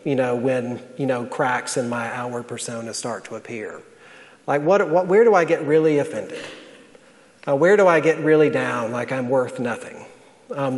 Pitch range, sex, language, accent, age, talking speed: 145-185 Hz, male, English, American, 40-59, 190 wpm